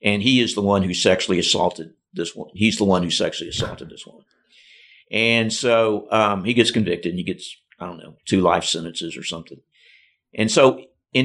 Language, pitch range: English, 100-140 Hz